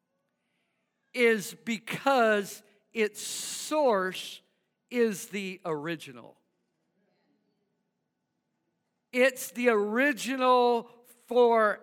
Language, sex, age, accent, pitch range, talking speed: English, male, 50-69, American, 190-245 Hz, 55 wpm